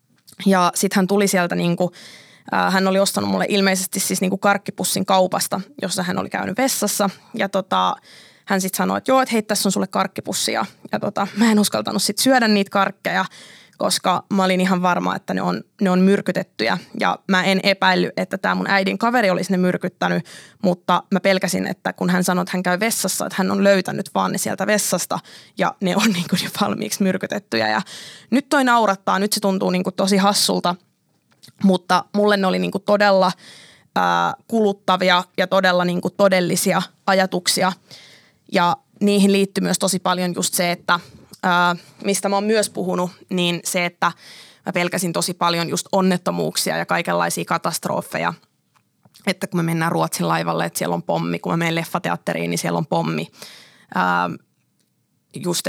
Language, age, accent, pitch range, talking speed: Finnish, 20-39, native, 175-200 Hz, 175 wpm